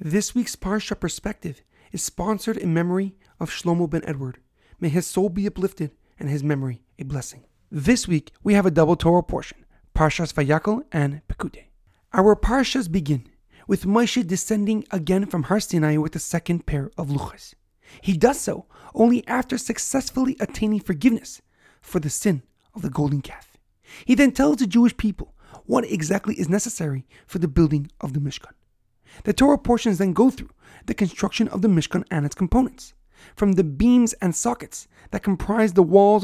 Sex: male